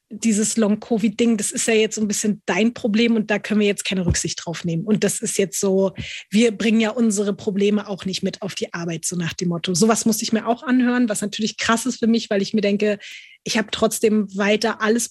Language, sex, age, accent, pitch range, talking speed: German, female, 20-39, German, 200-225 Hz, 240 wpm